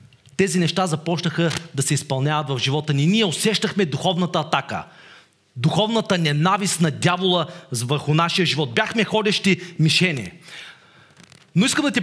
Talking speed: 135 wpm